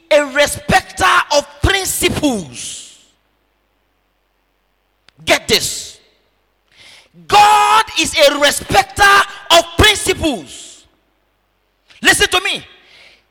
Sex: male